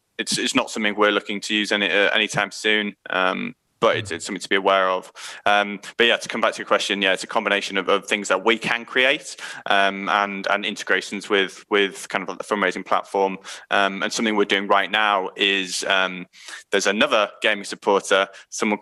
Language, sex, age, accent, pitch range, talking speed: English, male, 20-39, British, 100-105 Hz, 215 wpm